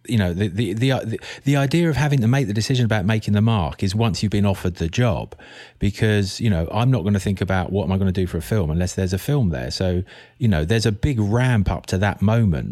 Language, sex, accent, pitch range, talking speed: English, male, British, 95-120 Hz, 275 wpm